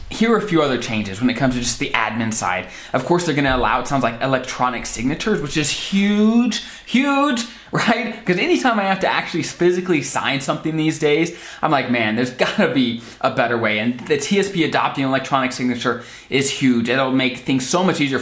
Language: English